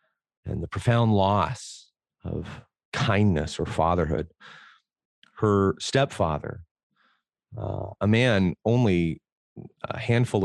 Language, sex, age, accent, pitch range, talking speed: Swedish, male, 40-59, American, 90-115 Hz, 90 wpm